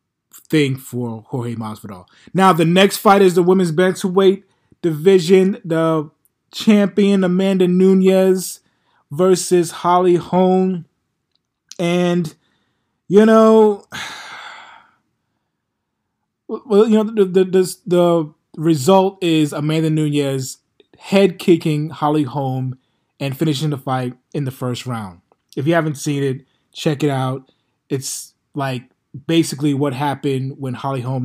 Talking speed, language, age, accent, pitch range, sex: 125 wpm, English, 20-39, American, 130-180 Hz, male